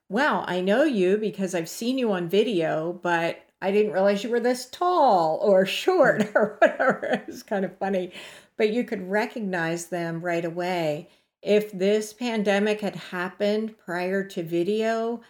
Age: 50-69